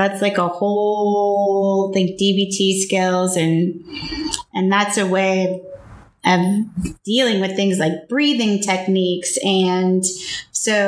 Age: 30-49